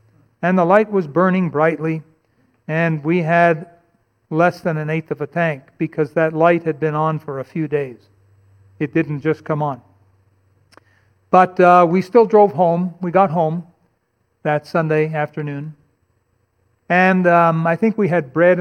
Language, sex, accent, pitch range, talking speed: English, male, American, 125-175 Hz, 160 wpm